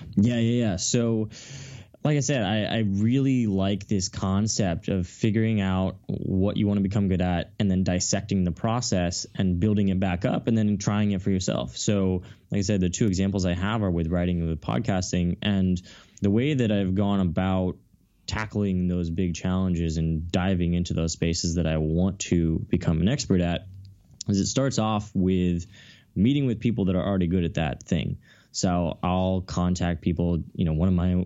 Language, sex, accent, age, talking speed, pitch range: English, male, American, 10-29, 195 wpm, 90-105 Hz